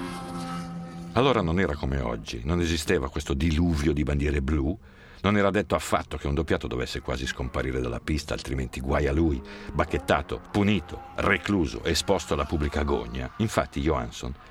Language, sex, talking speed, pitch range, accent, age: Italian, male, 155 wpm, 70-90 Hz, native, 60-79